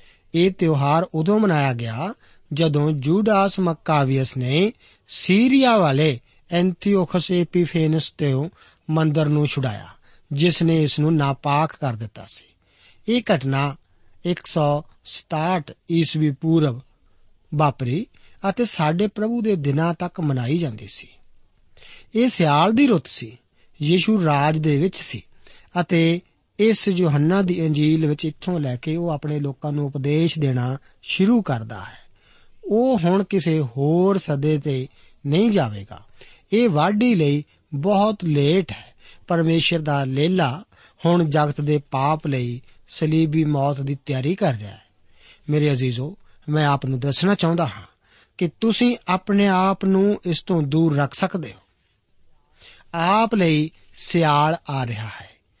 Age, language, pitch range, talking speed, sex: 50-69, Punjabi, 140-180 Hz, 80 wpm, male